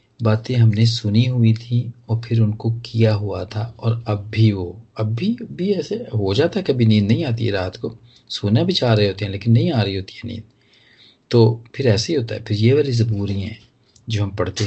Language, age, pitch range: Hindi, 40-59, 105-120 Hz